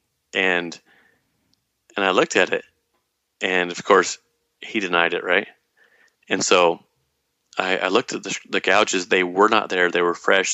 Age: 40-59